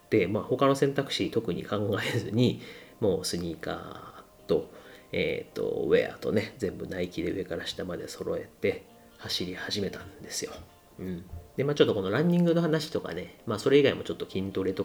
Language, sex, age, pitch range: Japanese, male, 40-59, 95-155 Hz